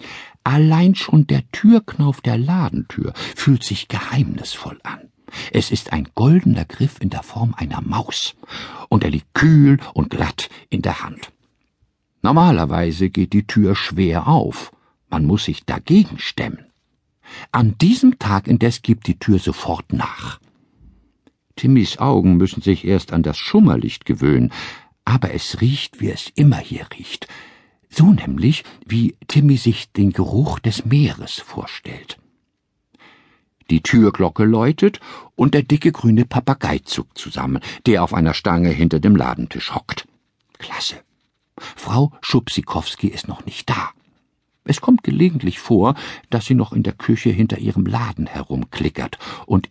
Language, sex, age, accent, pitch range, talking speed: German, male, 60-79, German, 95-135 Hz, 140 wpm